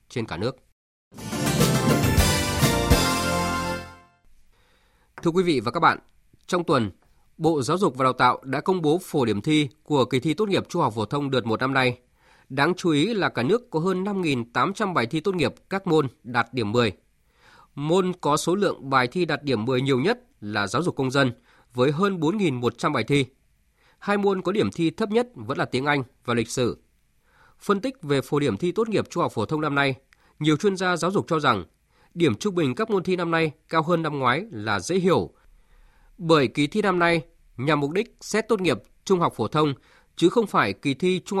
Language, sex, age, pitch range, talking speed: Vietnamese, male, 20-39, 125-180 Hz, 210 wpm